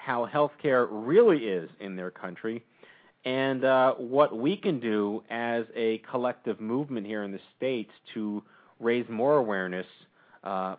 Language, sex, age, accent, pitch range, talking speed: English, male, 40-59, American, 105-130 Hz, 145 wpm